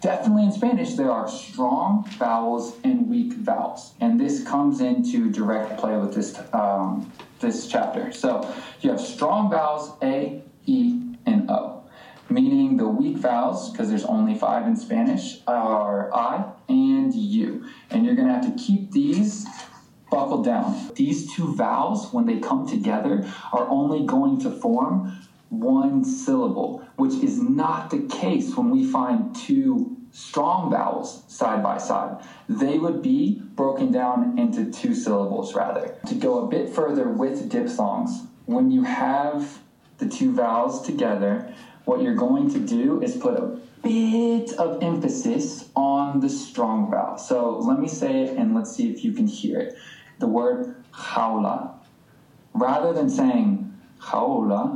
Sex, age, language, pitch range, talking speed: male, 20-39, English, 210-260 Hz, 150 wpm